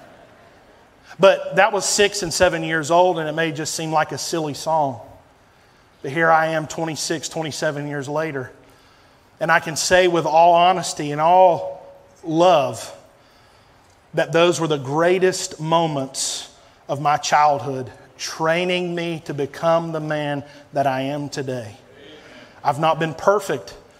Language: English